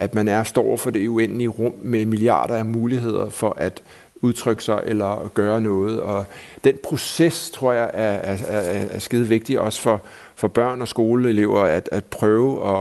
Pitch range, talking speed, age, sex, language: 105-120 Hz, 180 wpm, 60-79, male, Danish